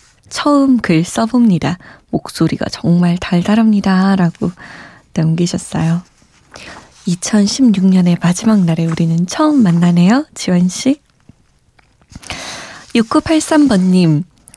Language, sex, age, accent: Korean, female, 20-39, native